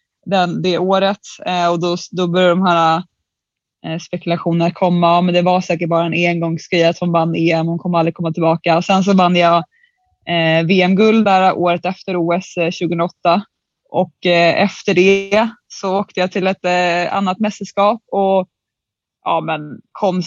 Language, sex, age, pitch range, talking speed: English, female, 20-39, 170-200 Hz, 170 wpm